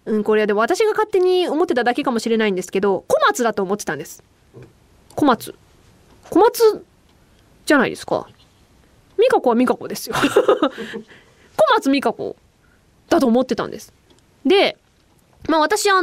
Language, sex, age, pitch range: Japanese, female, 20-39, 230-380 Hz